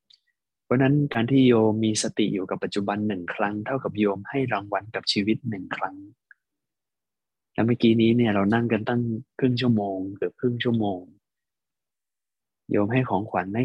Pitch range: 100-125 Hz